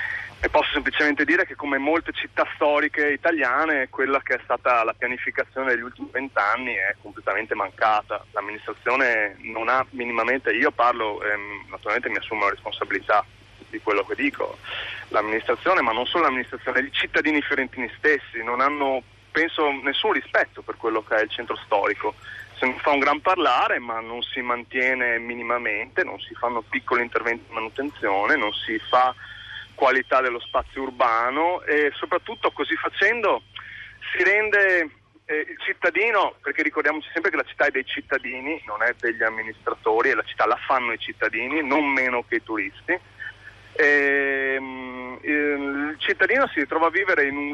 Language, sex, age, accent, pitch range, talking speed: Italian, male, 30-49, native, 120-160 Hz, 160 wpm